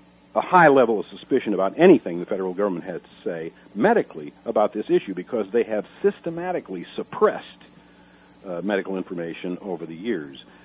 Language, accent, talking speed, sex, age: English, American, 160 wpm, male, 50-69